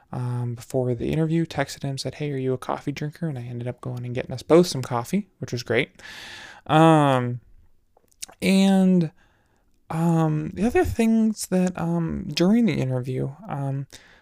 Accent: American